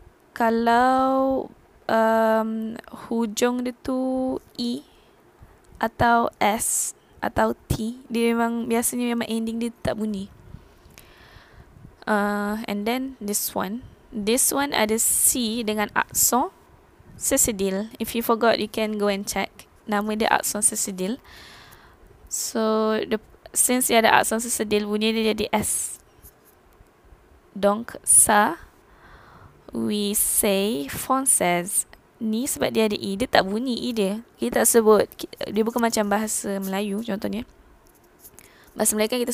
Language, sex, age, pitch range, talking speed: Malay, female, 20-39, 205-235 Hz, 120 wpm